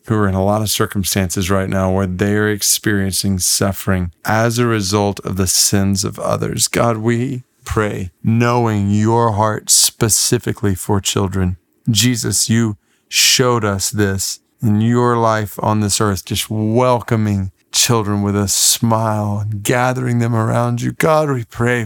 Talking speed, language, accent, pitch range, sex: 150 wpm, English, American, 105-135 Hz, male